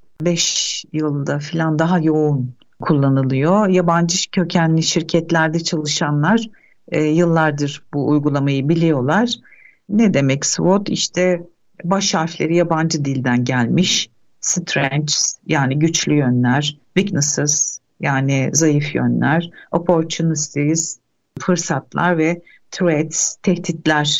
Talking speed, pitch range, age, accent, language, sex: 90 wpm, 150-185 Hz, 60-79, native, Turkish, female